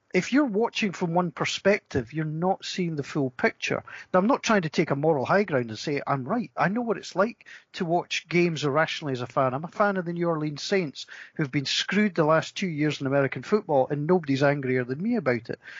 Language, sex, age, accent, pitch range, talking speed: English, male, 40-59, British, 155-225 Hz, 240 wpm